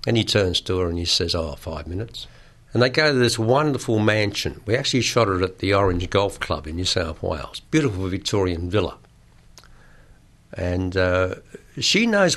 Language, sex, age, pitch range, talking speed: English, male, 60-79, 95-120 Hz, 185 wpm